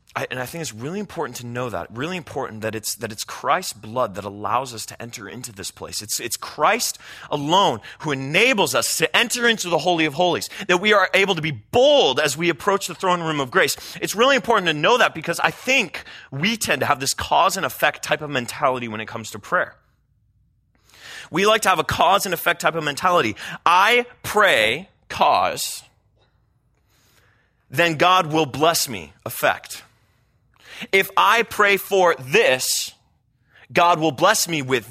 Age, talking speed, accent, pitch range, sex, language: 30-49, 185 wpm, American, 120-185 Hz, male, English